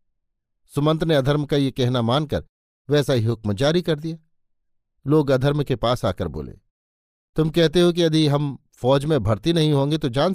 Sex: male